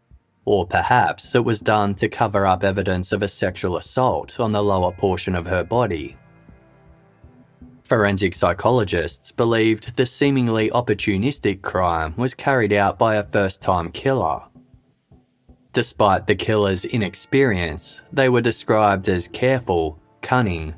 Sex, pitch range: male, 95-120 Hz